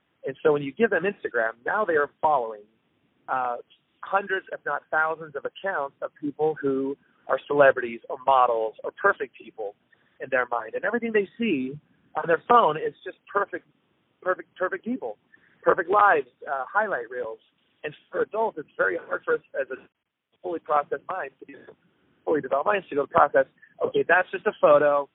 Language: English